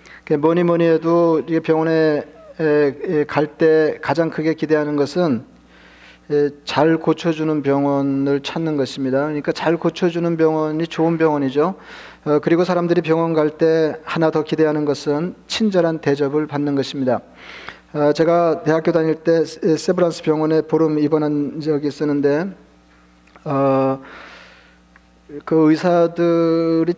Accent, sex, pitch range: native, male, 140-165 Hz